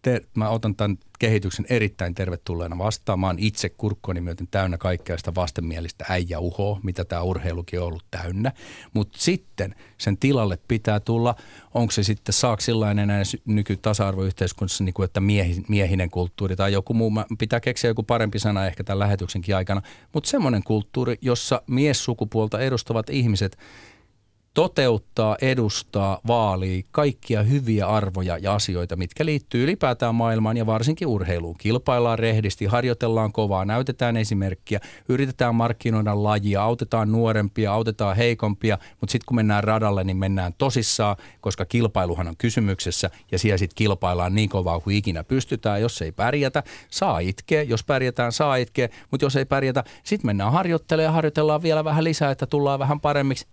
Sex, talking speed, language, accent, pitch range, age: male, 150 wpm, Finnish, native, 95-125 Hz, 40-59